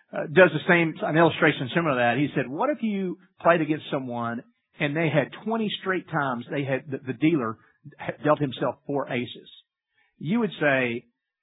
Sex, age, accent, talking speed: male, 50-69, American, 185 wpm